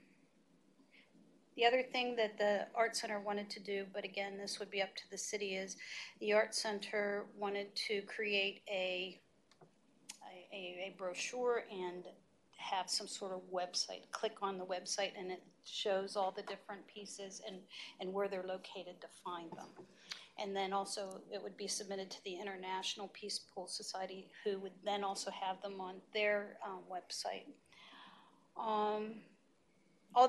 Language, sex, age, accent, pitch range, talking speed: English, female, 50-69, American, 190-210 Hz, 155 wpm